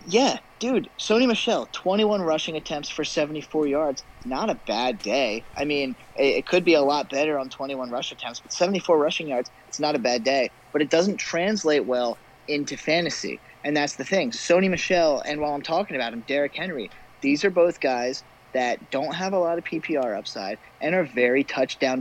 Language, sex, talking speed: English, male, 200 wpm